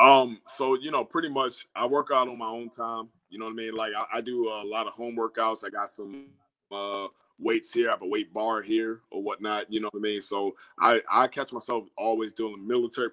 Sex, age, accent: male, 20-39, American